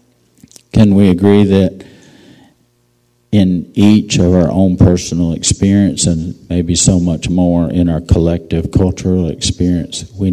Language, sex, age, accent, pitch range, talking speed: English, male, 50-69, American, 85-105 Hz, 130 wpm